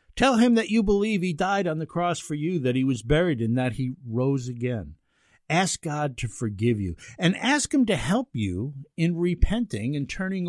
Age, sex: 50-69, male